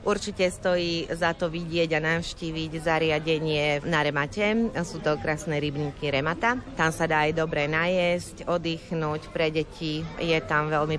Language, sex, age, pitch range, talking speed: Slovak, female, 30-49, 150-175 Hz, 145 wpm